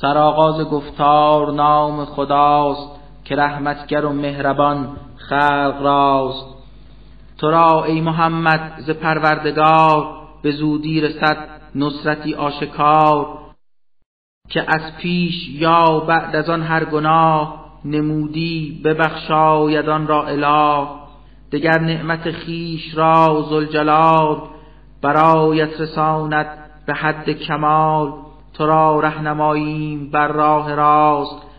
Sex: male